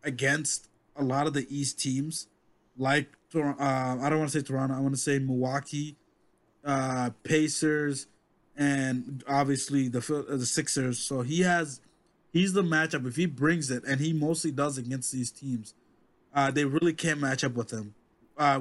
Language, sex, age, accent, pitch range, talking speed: English, male, 20-39, American, 130-155 Hz, 175 wpm